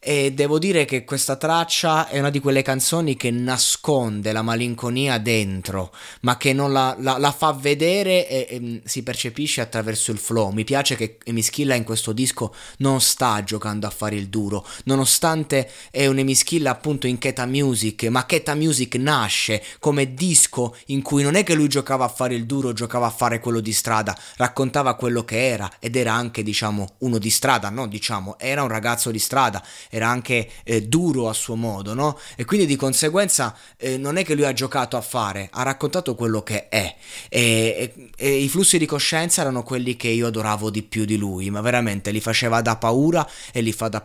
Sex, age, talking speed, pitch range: male, 20-39, 200 wpm, 110-140 Hz